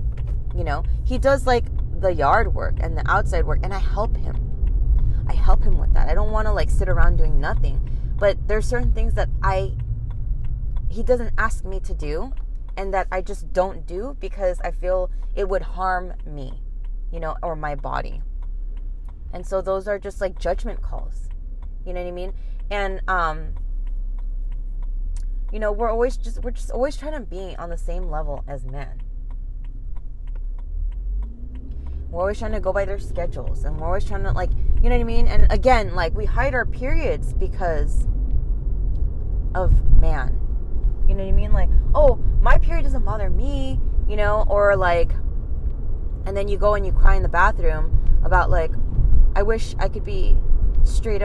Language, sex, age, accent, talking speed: English, female, 20-39, American, 180 wpm